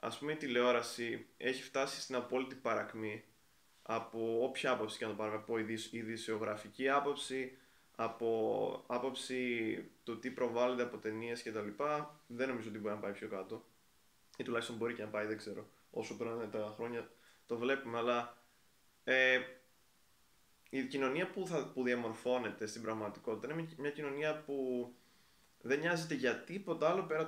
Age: 20-39